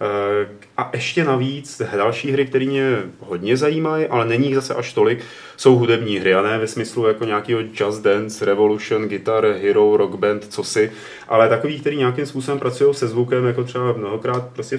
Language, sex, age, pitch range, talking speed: Czech, male, 30-49, 115-145 Hz, 180 wpm